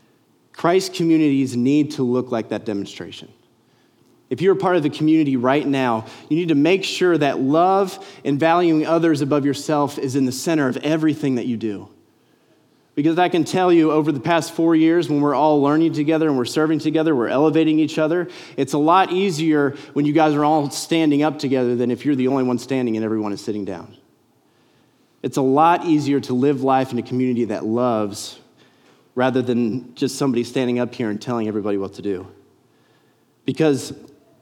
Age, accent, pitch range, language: 30-49, American, 130-165 Hz, English